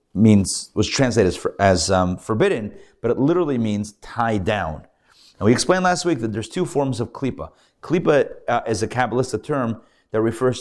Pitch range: 105-130 Hz